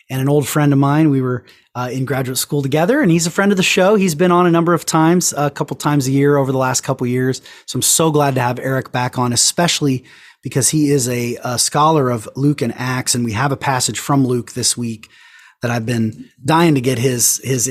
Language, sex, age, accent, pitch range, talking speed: English, male, 30-49, American, 115-150 Hz, 250 wpm